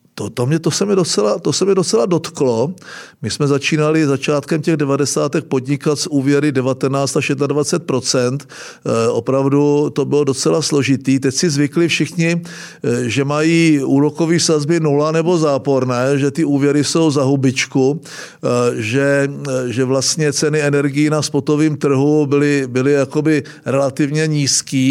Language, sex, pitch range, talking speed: Czech, male, 140-170 Hz, 140 wpm